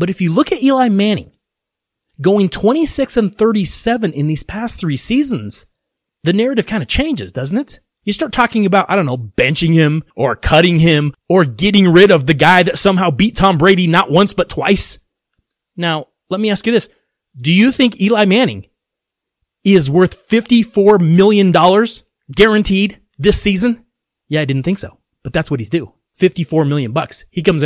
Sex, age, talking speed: male, 30-49, 180 wpm